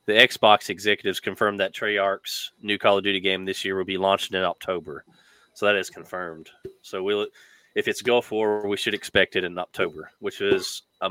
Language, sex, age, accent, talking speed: English, male, 20-39, American, 200 wpm